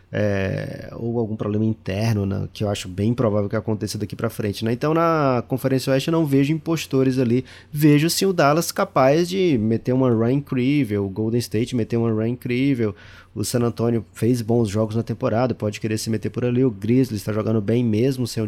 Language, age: Portuguese, 20-39